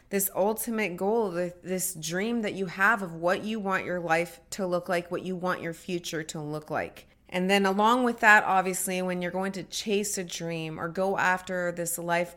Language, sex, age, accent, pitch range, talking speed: English, female, 30-49, American, 175-215 Hz, 210 wpm